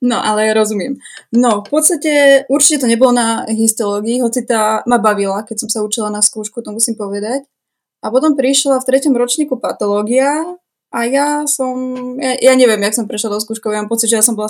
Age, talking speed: 20-39, 205 wpm